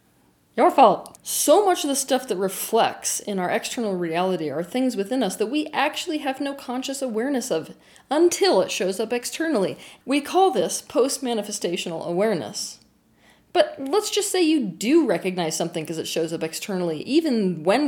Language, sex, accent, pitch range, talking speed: English, female, American, 185-275 Hz, 170 wpm